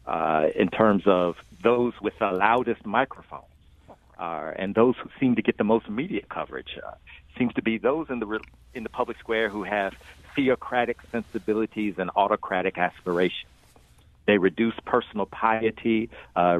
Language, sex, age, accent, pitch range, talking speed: English, male, 50-69, American, 90-110 Hz, 160 wpm